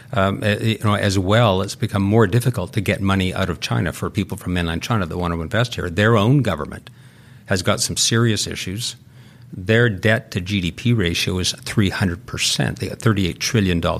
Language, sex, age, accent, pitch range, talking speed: English, male, 50-69, American, 95-120 Hz, 180 wpm